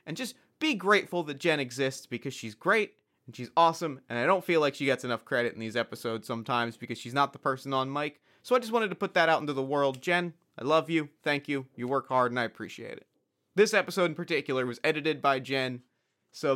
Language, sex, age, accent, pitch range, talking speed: English, male, 30-49, American, 130-175 Hz, 240 wpm